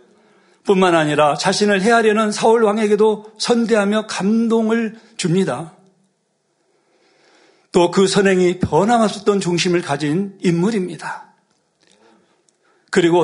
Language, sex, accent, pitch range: Korean, male, native, 160-210 Hz